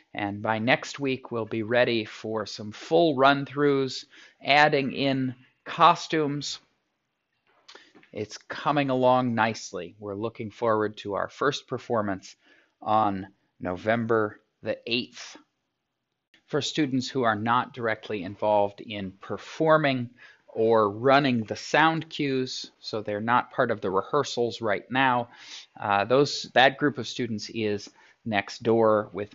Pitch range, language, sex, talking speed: 105-130 Hz, English, male, 125 wpm